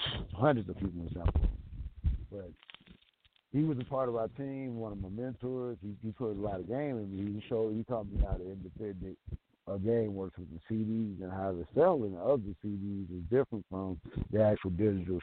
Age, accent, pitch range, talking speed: 50-69, American, 95-120 Hz, 205 wpm